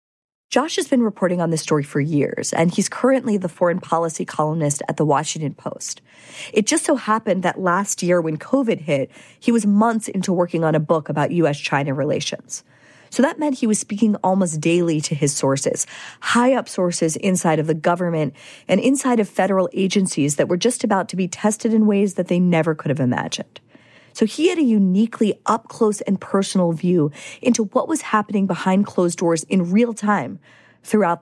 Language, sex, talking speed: English, female, 190 wpm